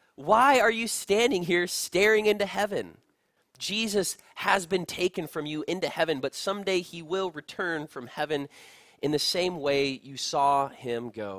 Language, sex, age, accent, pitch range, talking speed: English, male, 20-39, American, 120-165 Hz, 165 wpm